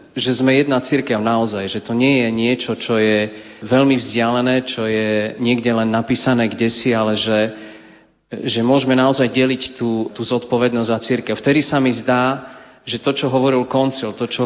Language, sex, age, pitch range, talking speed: Slovak, male, 30-49, 115-130 Hz, 180 wpm